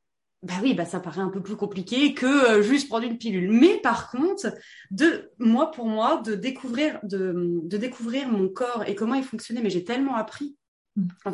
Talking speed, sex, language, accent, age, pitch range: 200 wpm, female, French, French, 20-39, 195-245 Hz